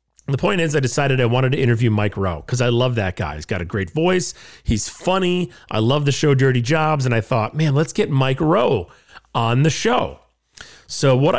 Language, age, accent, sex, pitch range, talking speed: English, 40-59, American, male, 115-155 Hz, 220 wpm